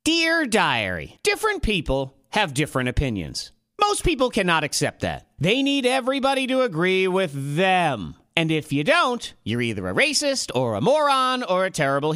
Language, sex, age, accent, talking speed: English, male, 40-59, American, 165 wpm